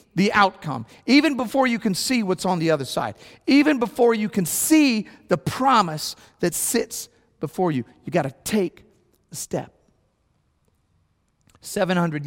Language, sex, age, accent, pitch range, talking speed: English, male, 40-59, American, 120-155 Hz, 145 wpm